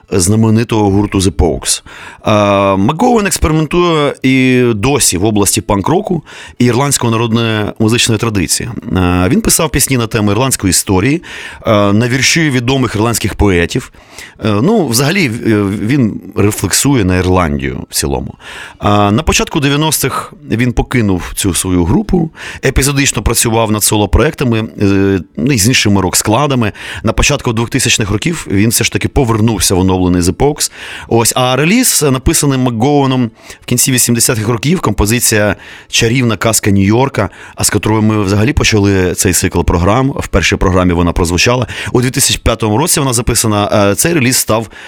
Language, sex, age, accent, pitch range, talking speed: Ukrainian, male, 30-49, native, 100-130 Hz, 130 wpm